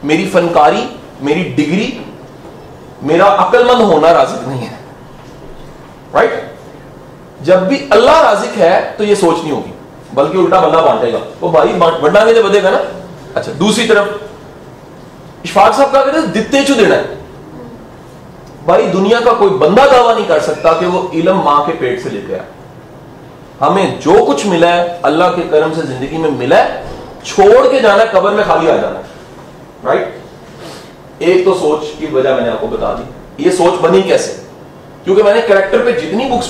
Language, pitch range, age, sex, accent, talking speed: English, 160-240 Hz, 40-59, male, Indian, 130 wpm